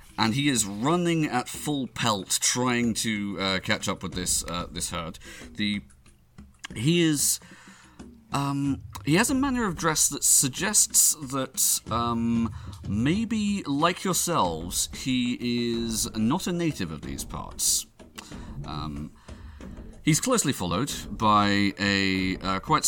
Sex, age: male, 40-59